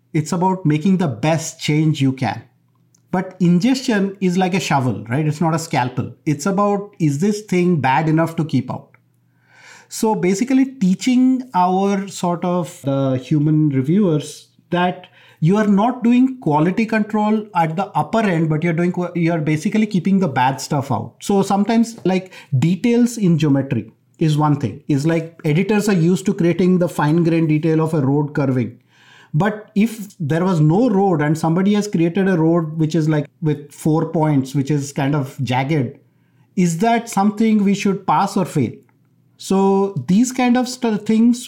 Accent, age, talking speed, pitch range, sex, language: Indian, 30-49, 170 wpm, 150-195 Hz, male, English